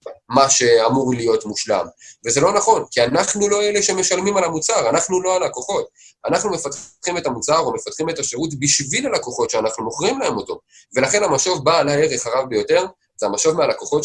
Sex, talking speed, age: male, 170 wpm, 20-39